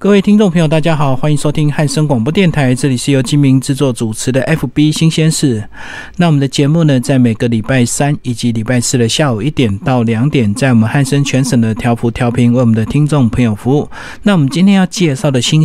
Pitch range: 125-150 Hz